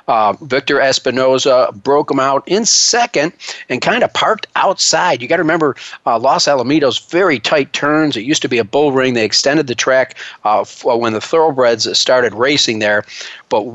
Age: 40-59